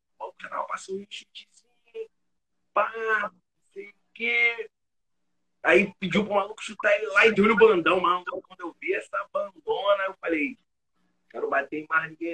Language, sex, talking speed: Portuguese, male, 165 wpm